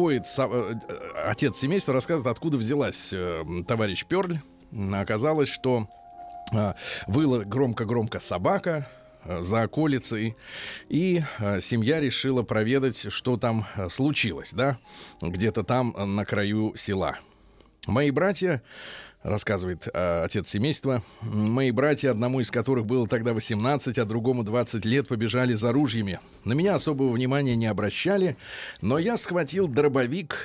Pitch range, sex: 110-140 Hz, male